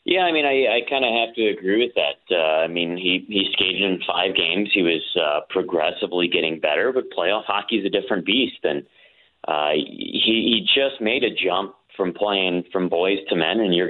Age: 30-49